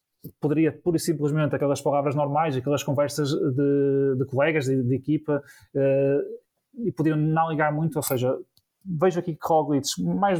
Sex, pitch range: male, 135-155 Hz